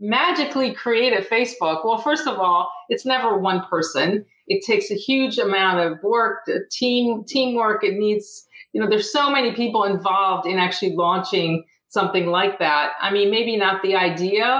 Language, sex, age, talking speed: English, female, 40-59, 175 wpm